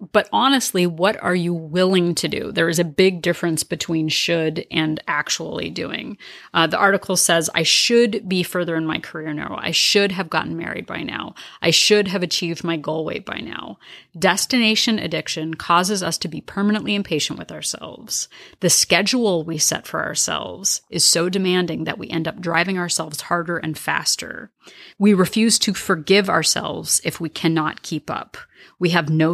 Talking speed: 180 wpm